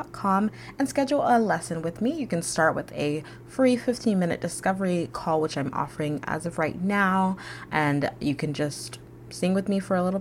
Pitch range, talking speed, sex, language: 145-190 Hz, 195 wpm, female, English